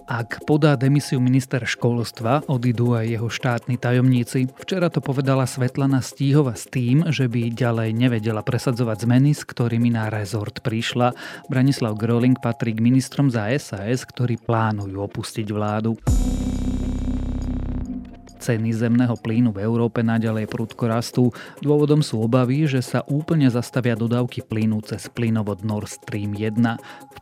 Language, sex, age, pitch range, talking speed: Slovak, male, 30-49, 110-130 Hz, 135 wpm